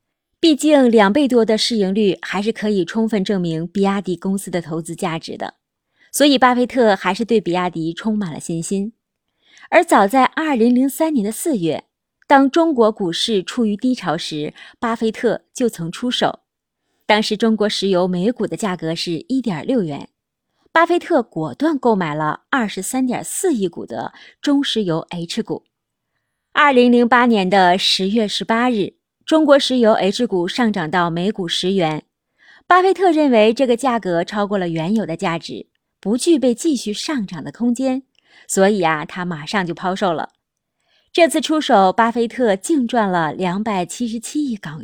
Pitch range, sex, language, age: 180-255 Hz, female, Chinese, 30-49